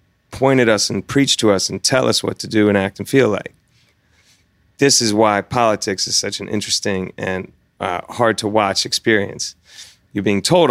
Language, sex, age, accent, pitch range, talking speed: English, male, 30-49, American, 95-125 Hz, 195 wpm